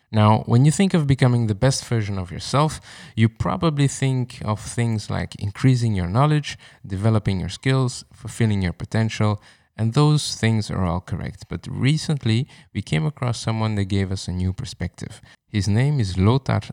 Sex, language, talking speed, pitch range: male, English, 170 wpm, 95-125 Hz